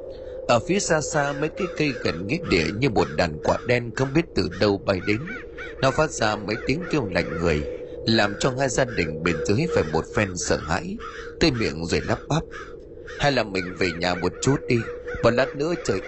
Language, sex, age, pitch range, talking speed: Vietnamese, male, 20-39, 100-165 Hz, 215 wpm